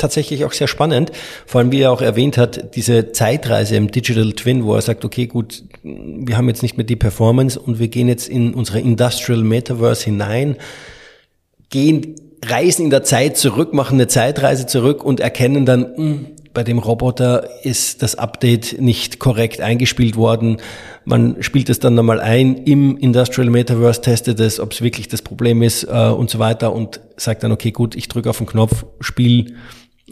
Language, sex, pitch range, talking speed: German, male, 110-125 Hz, 180 wpm